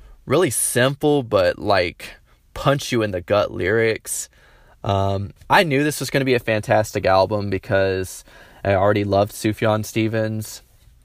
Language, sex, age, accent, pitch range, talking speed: English, male, 20-39, American, 100-115 Hz, 145 wpm